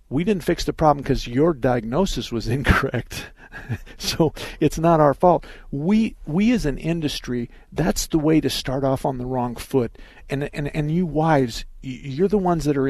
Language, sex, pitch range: English, male, 125-165 Hz